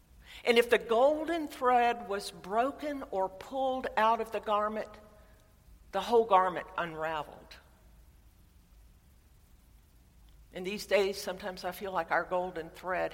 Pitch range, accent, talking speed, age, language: 160-235 Hz, American, 125 wpm, 60-79, English